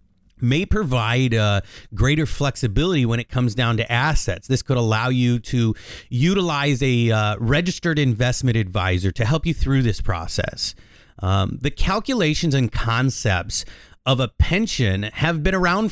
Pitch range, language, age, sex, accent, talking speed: 115-155 Hz, English, 30-49, male, American, 145 wpm